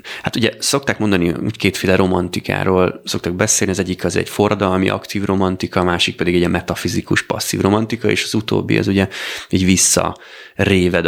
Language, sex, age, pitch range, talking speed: Hungarian, male, 30-49, 90-105 Hz, 170 wpm